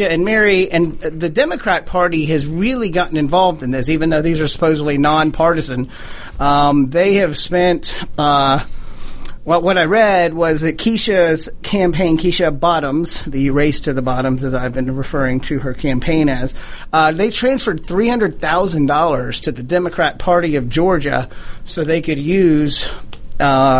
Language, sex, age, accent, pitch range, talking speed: English, male, 40-59, American, 145-185 Hz, 160 wpm